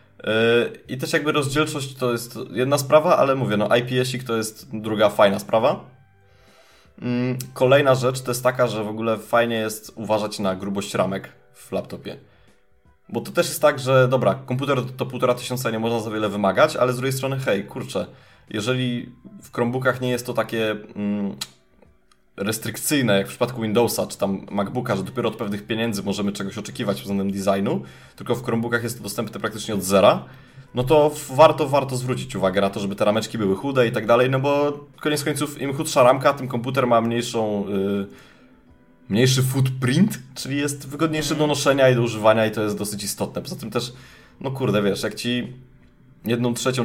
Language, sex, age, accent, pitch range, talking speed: Polish, male, 20-39, native, 105-130 Hz, 185 wpm